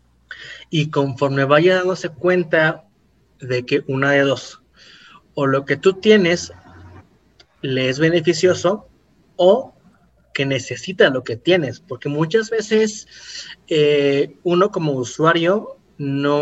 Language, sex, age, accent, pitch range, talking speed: Spanish, male, 30-49, Mexican, 135-180 Hz, 115 wpm